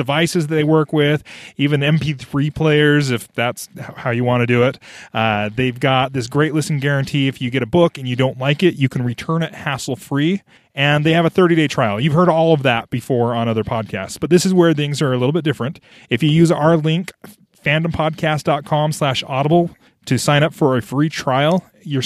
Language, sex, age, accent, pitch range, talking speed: English, male, 30-49, American, 130-165 Hz, 215 wpm